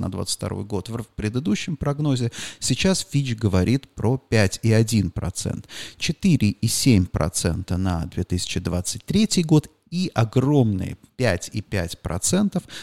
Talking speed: 110 wpm